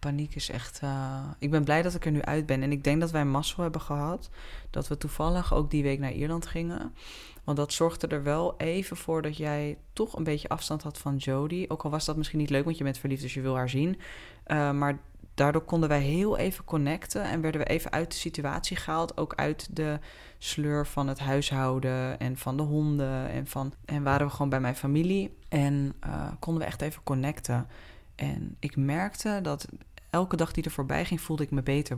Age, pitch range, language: 20-39, 130-150 Hz, Dutch